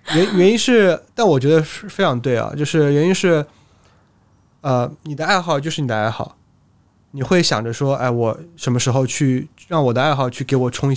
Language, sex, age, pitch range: Chinese, male, 20-39, 115-150 Hz